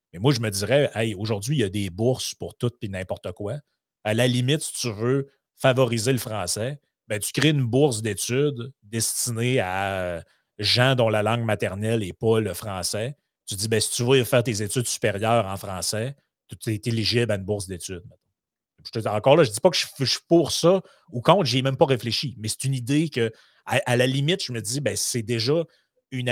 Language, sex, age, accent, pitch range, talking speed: French, male, 30-49, Canadian, 105-130 Hz, 220 wpm